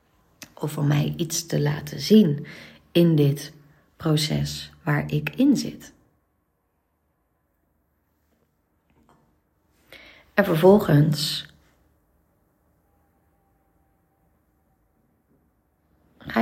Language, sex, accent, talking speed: Dutch, female, Dutch, 60 wpm